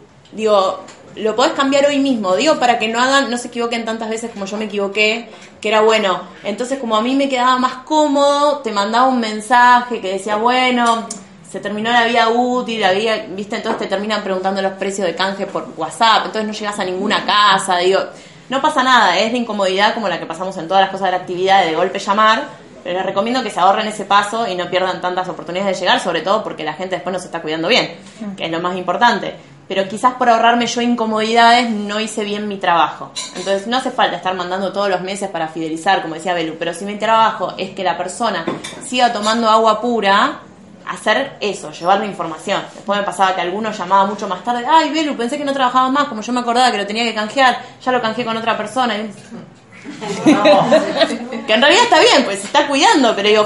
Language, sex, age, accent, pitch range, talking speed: Spanish, female, 20-39, Argentinian, 190-245 Hz, 220 wpm